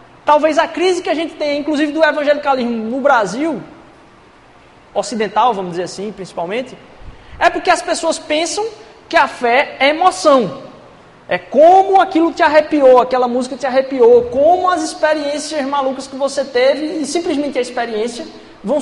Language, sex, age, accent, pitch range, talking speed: Portuguese, male, 20-39, Brazilian, 240-320 Hz, 155 wpm